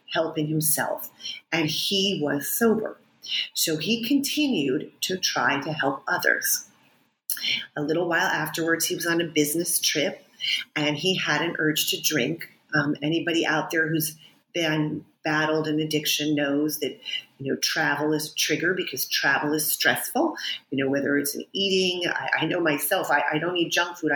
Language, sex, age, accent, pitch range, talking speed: English, female, 40-59, American, 150-175 Hz, 165 wpm